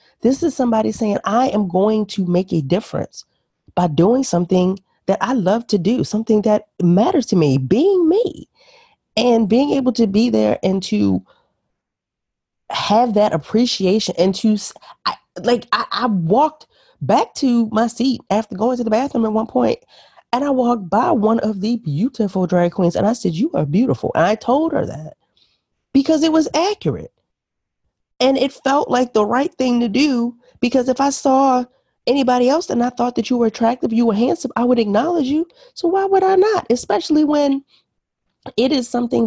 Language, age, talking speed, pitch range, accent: English, 30-49, 180 wpm, 210-265 Hz, American